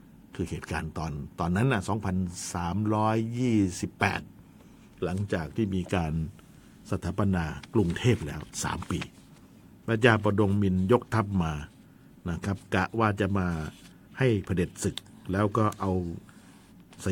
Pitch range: 85-110 Hz